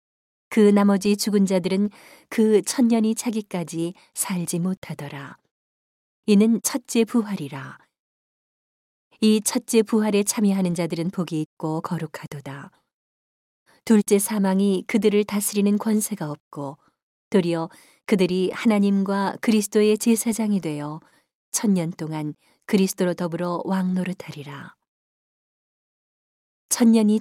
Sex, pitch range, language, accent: female, 175-210 Hz, Korean, native